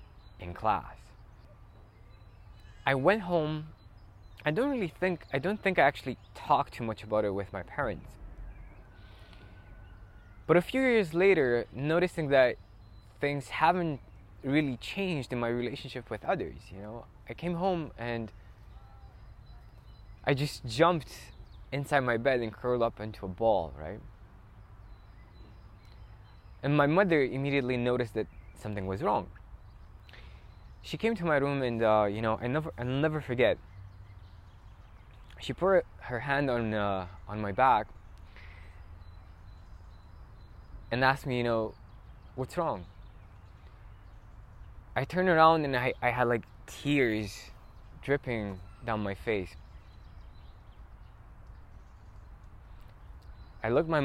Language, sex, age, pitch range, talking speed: English, male, 20-39, 95-130 Hz, 125 wpm